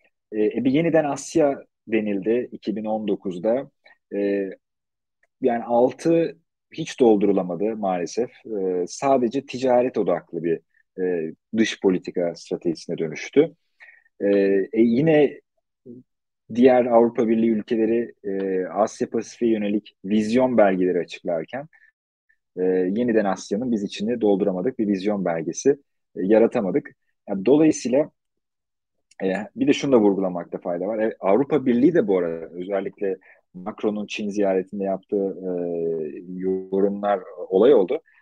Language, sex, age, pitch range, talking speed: Turkish, male, 40-59, 100-140 Hz, 115 wpm